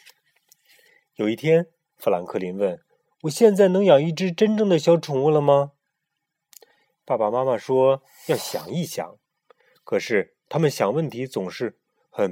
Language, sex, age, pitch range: Chinese, male, 30-49, 135-220 Hz